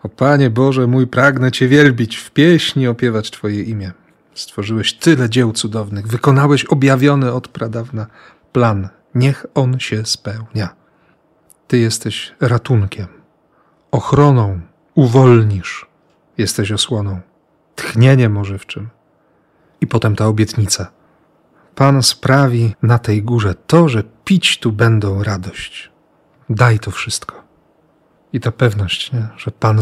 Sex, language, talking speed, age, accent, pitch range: male, Polish, 115 wpm, 40-59, native, 105-135 Hz